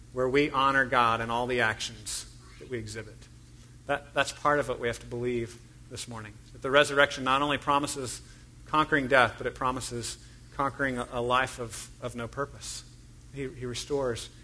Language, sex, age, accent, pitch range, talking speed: English, male, 40-59, American, 120-145 Hz, 185 wpm